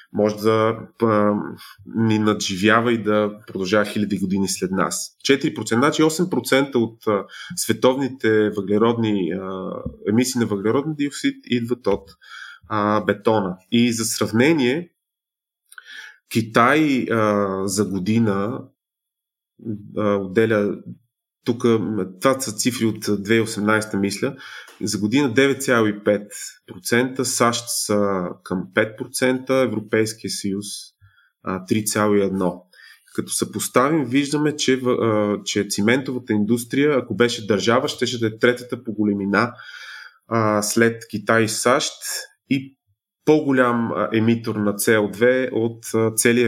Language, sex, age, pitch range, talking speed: Bulgarian, male, 20-39, 105-120 Hz, 100 wpm